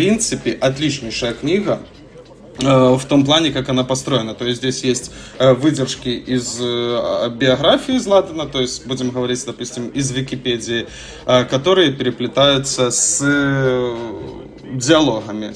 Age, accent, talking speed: 20-39, native, 130 wpm